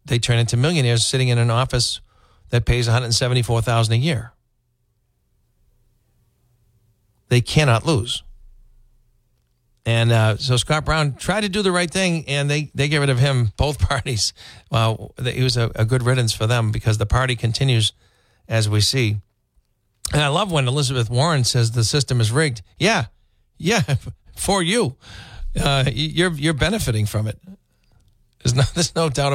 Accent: American